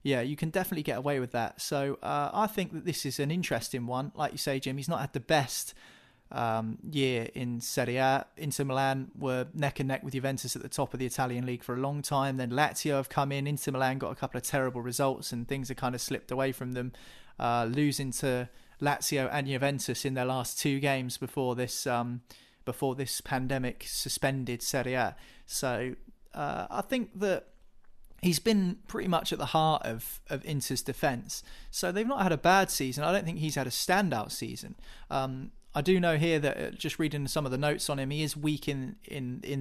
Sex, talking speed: male, 220 wpm